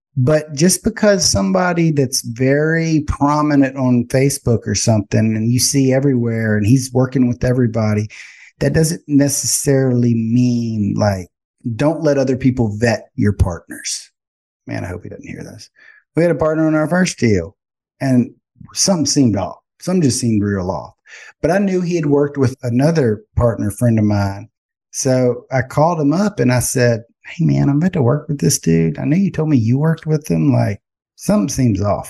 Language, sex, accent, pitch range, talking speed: English, male, American, 115-145 Hz, 185 wpm